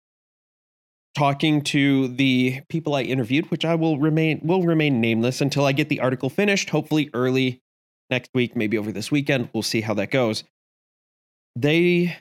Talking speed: 160 wpm